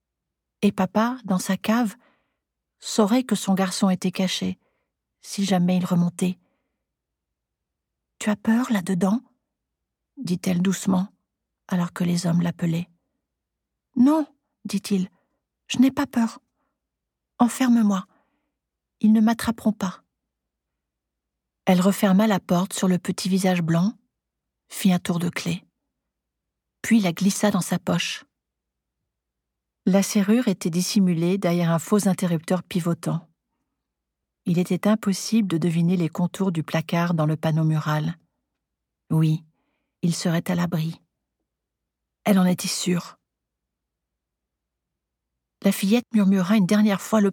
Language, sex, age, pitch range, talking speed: French, female, 50-69, 165-205 Hz, 120 wpm